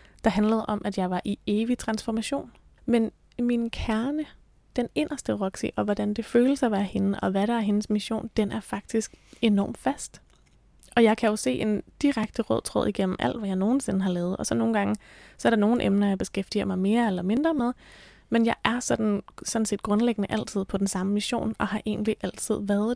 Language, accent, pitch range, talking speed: Danish, native, 200-235 Hz, 215 wpm